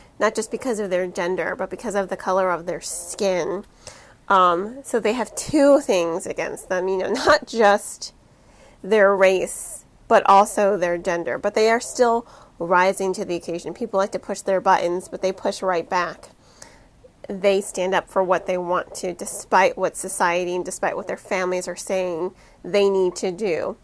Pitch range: 185-230 Hz